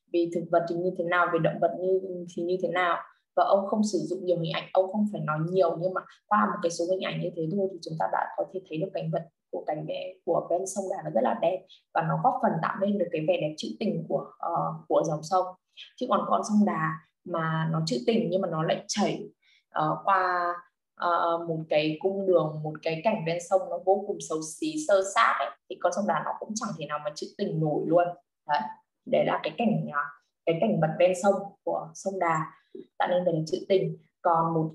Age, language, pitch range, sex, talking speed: 20-39, Vietnamese, 165-195 Hz, female, 245 wpm